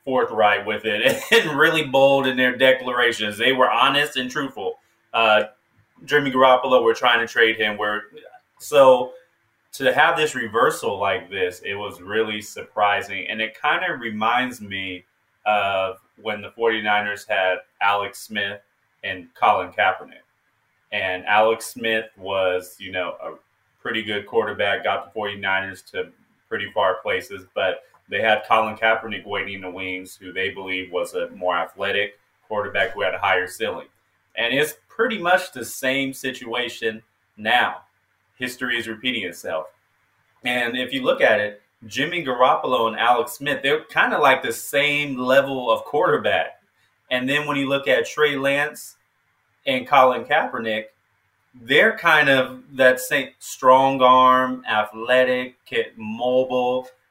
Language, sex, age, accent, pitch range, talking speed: English, male, 20-39, American, 105-135 Hz, 150 wpm